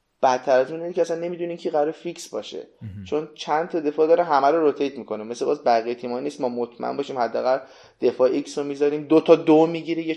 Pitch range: 120-155 Hz